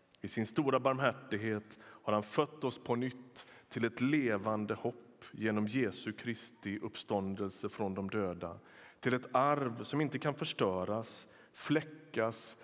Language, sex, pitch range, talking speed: Swedish, male, 110-140 Hz, 140 wpm